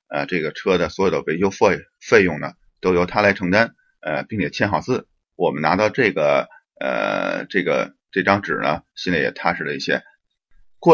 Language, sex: Chinese, male